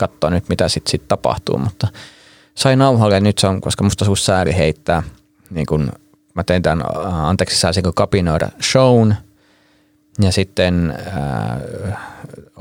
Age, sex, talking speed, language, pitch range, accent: 30-49, male, 145 wpm, Finnish, 80-100 Hz, native